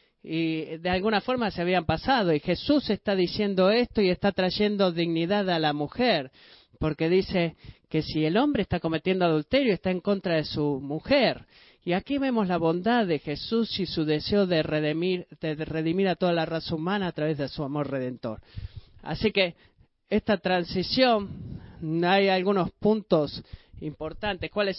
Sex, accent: male, Argentinian